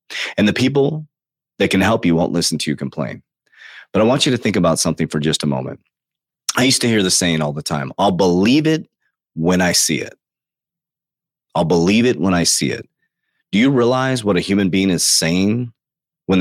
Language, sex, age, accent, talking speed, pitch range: English, male, 30-49, American, 210 wpm, 90-130 Hz